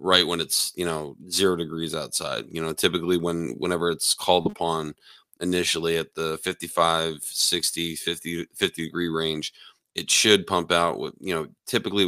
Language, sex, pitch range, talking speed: English, male, 80-90 Hz, 165 wpm